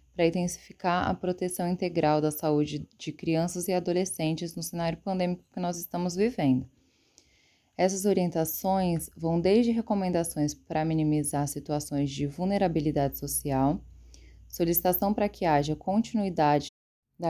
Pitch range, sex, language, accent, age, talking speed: 150-185 Hz, female, Portuguese, Brazilian, 10-29, 120 wpm